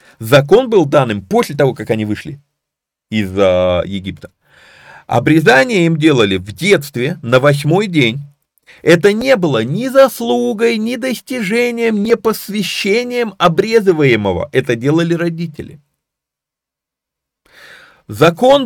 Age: 40-59